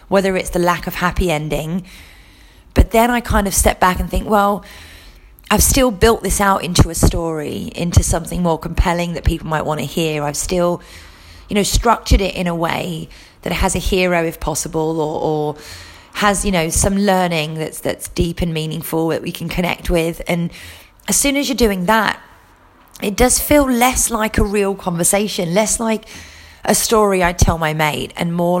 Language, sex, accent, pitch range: English, female, British, 155-200 Hz